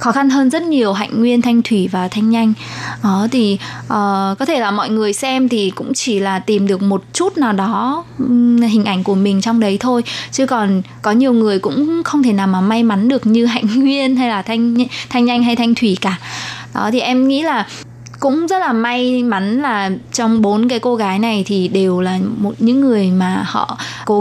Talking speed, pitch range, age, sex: 215 wpm, 200-245 Hz, 20-39, female